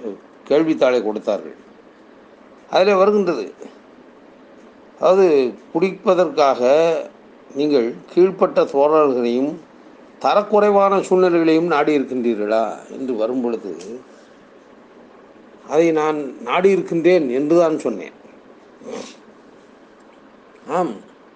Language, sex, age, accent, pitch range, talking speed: Tamil, male, 50-69, native, 145-180 Hz, 55 wpm